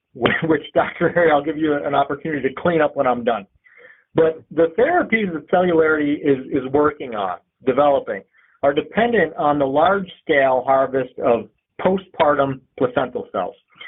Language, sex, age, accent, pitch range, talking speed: English, male, 50-69, American, 135-180 Hz, 145 wpm